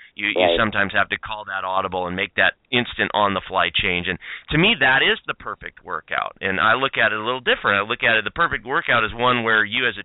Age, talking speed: 30-49, 255 wpm